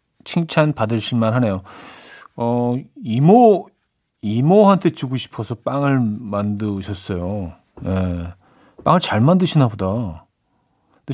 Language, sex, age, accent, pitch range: Korean, male, 40-59, native, 110-160 Hz